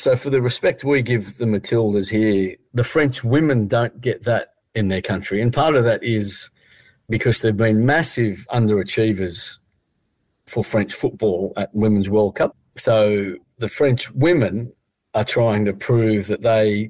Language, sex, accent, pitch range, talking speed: English, male, Australian, 105-125 Hz, 160 wpm